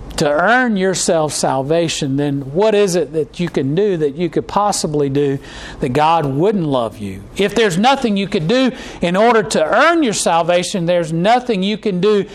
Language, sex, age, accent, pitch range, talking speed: English, male, 40-59, American, 160-210 Hz, 190 wpm